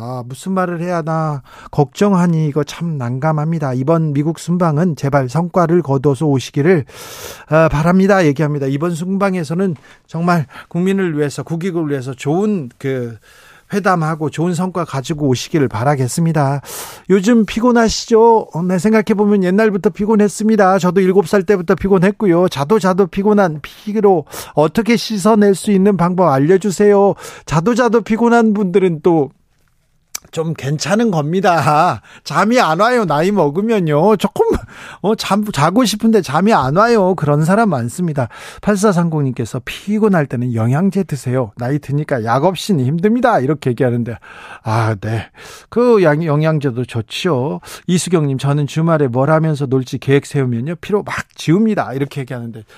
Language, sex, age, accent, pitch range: Korean, male, 40-59, native, 145-200 Hz